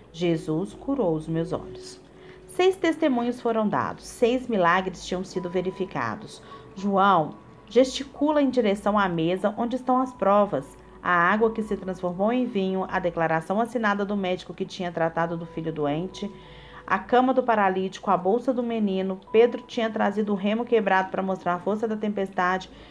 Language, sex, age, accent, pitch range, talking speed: Portuguese, female, 40-59, Brazilian, 170-220 Hz, 160 wpm